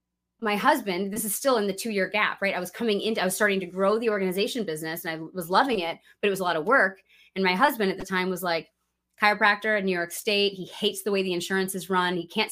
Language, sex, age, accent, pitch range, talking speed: English, female, 20-39, American, 185-215 Hz, 275 wpm